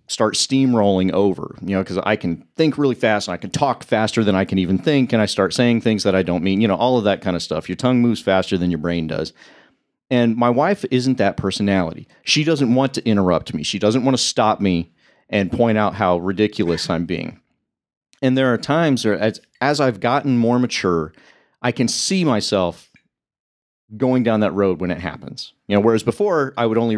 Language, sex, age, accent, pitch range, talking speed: English, male, 40-59, American, 95-125 Hz, 220 wpm